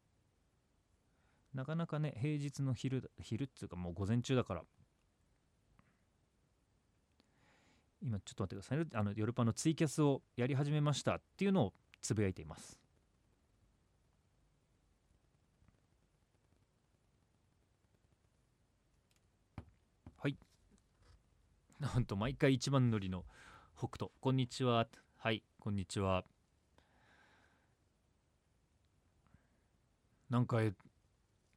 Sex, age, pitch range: male, 40-59, 100-135 Hz